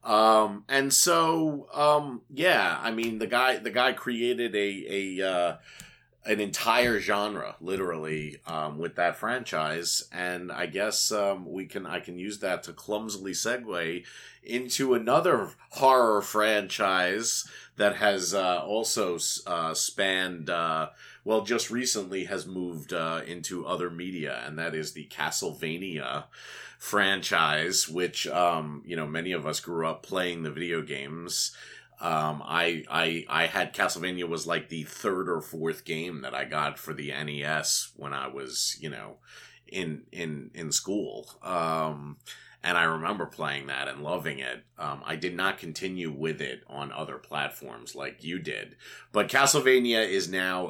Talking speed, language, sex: 155 wpm, English, male